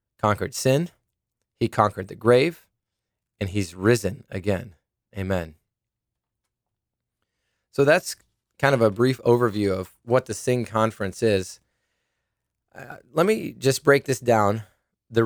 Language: English